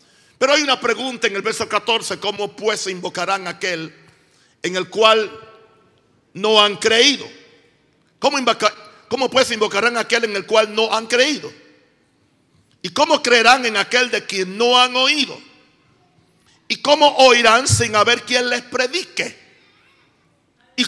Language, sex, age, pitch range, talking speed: Spanish, male, 60-79, 220-260 Hz, 135 wpm